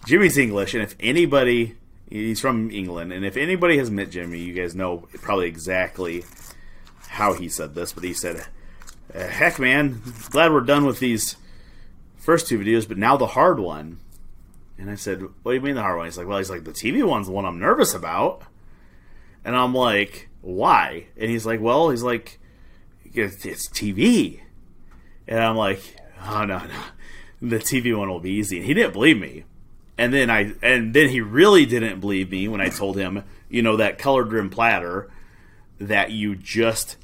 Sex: male